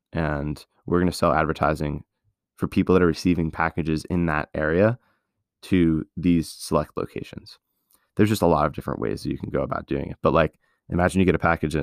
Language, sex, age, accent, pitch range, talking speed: English, male, 20-39, American, 80-90 Hz, 205 wpm